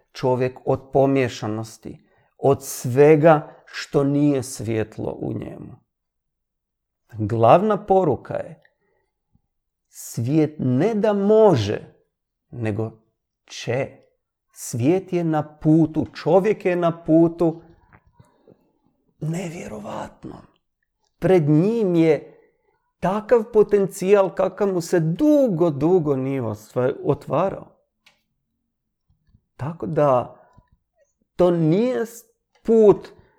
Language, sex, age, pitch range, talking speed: Croatian, male, 50-69, 135-190 Hz, 80 wpm